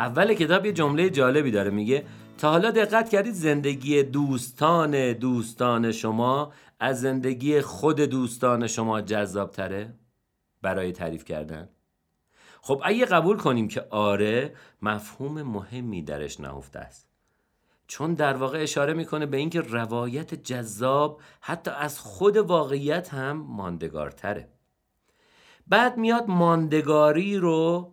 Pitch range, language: 110-170 Hz, Persian